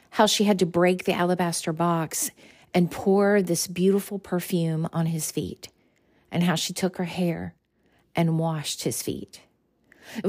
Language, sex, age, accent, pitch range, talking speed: English, female, 40-59, American, 170-200 Hz, 155 wpm